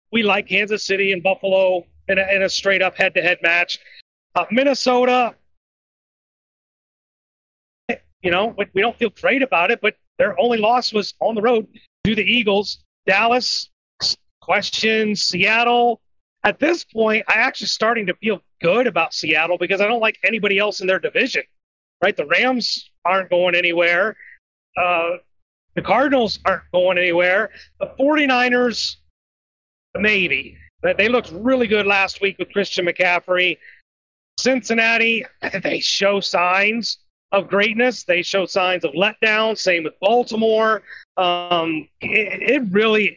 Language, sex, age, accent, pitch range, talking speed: English, male, 40-59, American, 180-230 Hz, 140 wpm